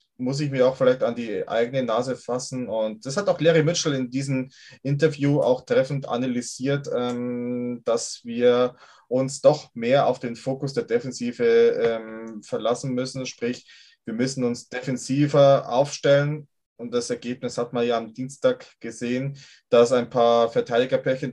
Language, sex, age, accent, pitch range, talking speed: German, male, 20-39, German, 125-150 Hz, 150 wpm